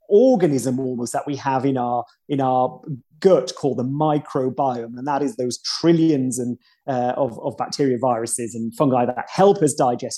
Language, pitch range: English, 125-160 Hz